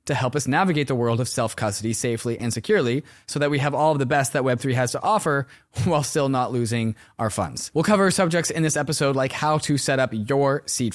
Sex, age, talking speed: male, 20-39, 235 wpm